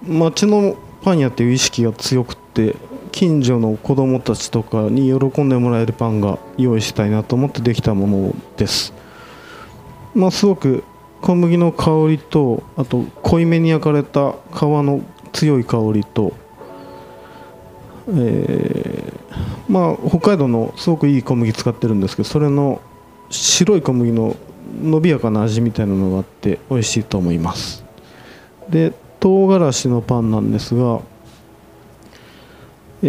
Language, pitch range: Japanese, 115-150 Hz